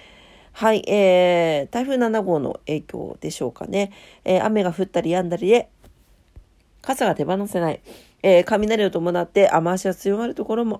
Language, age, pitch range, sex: Japanese, 40-59, 160-220 Hz, female